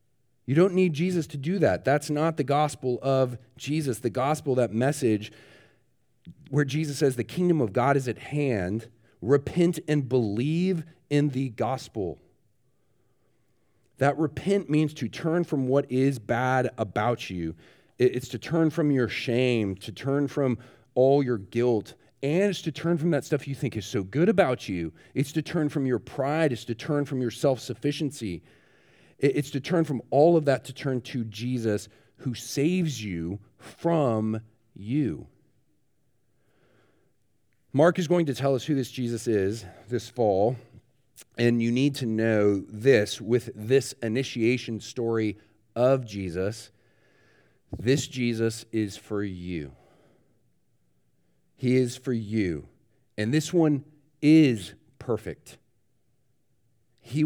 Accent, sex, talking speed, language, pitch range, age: American, male, 145 wpm, English, 110-140 Hz, 40-59